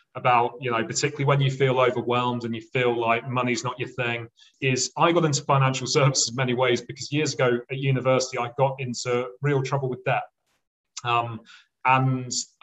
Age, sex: 30-49, male